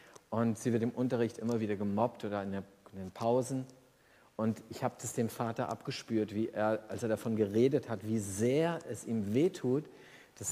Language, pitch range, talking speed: German, 110-130 Hz, 185 wpm